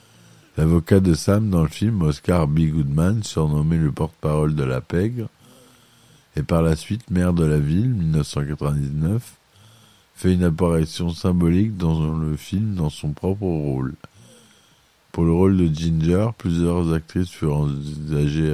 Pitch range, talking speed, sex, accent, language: 75-95 Hz, 140 wpm, male, French, French